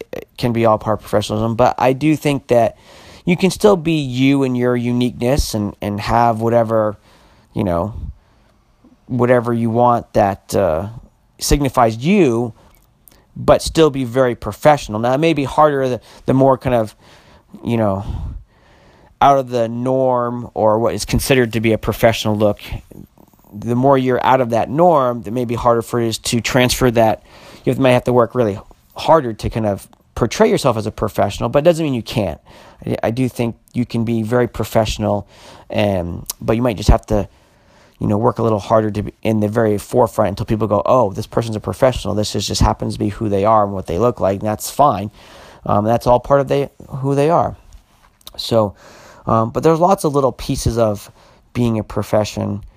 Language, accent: English, American